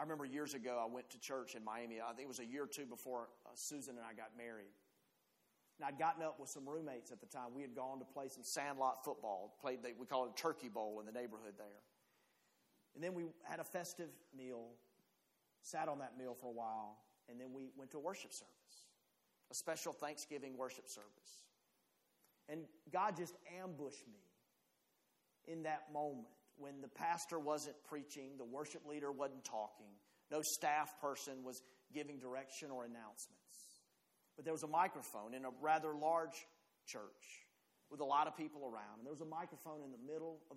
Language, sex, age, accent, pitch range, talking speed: English, male, 40-59, American, 125-155 Hz, 195 wpm